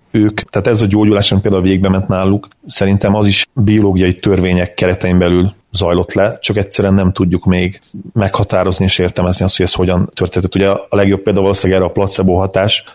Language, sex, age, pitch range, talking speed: Hungarian, male, 30-49, 90-100 Hz, 185 wpm